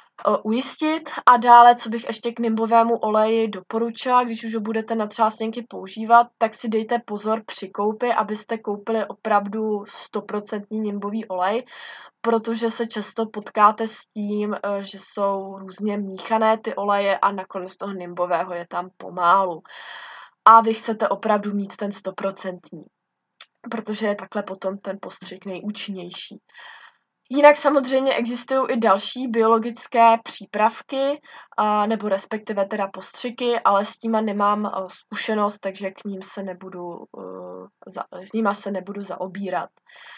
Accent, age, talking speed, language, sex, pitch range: native, 20-39, 130 wpm, Czech, female, 195-230 Hz